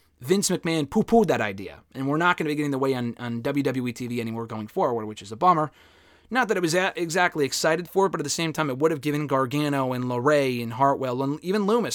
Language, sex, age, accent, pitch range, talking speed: English, male, 30-49, American, 120-170 Hz, 250 wpm